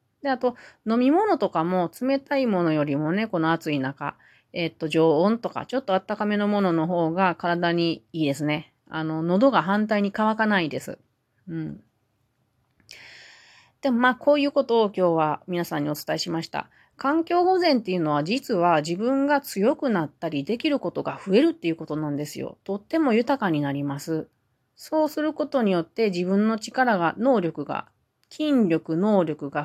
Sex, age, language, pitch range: female, 30-49, Japanese, 160-230 Hz